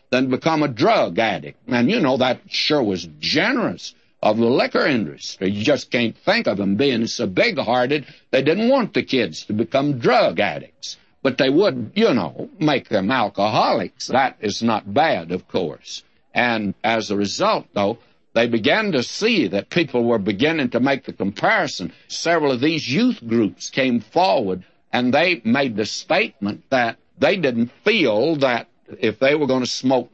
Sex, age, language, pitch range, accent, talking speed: male, 60-79, English, 115-155 Hz, American, 175 wpm